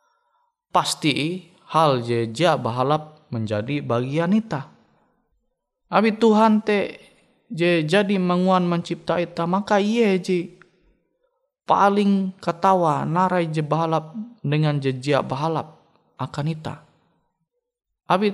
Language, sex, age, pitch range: Indonesian, male, 20-39, 135-180 Hz